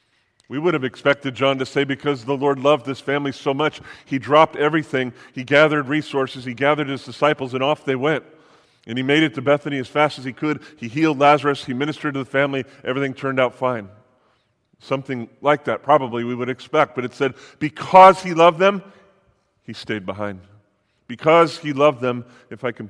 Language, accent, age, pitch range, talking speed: English, American, 40-59, 120-145 Hz, 200 wpm